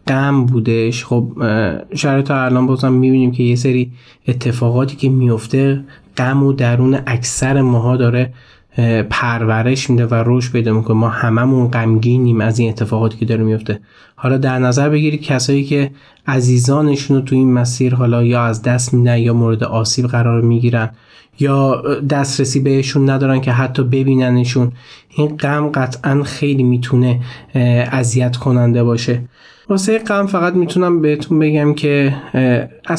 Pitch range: 120-135 Hz